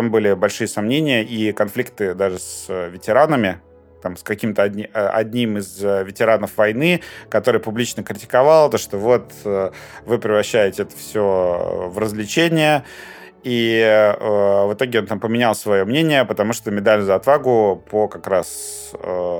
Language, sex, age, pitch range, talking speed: Russian, male, 30-49, 95-110 Hz, 140 wpm